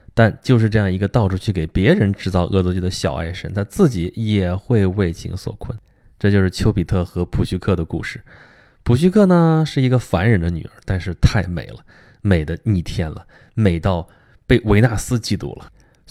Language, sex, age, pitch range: Chinese, male, 20-39, 90-115 Hz